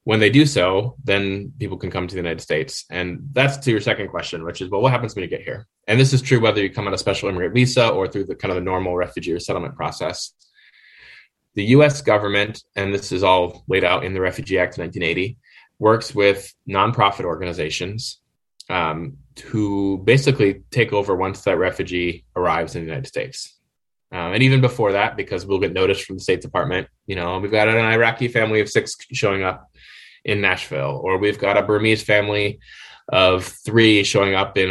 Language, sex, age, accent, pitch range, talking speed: English, male, 10-29, American, 90-110 Hz, 205 wpm